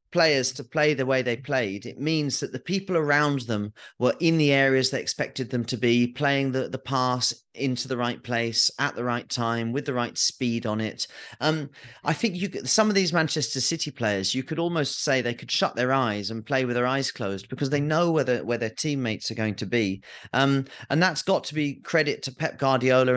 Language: English